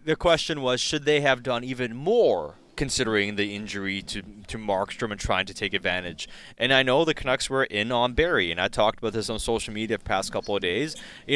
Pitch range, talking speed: 105-135 Hz, 225 wpm